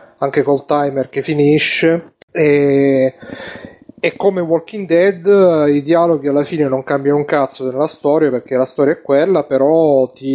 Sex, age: male, 30-49